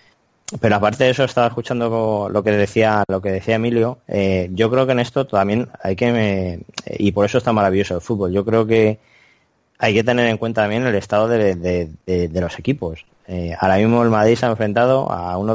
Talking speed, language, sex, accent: 220 wpm, Spanish, male, Spanish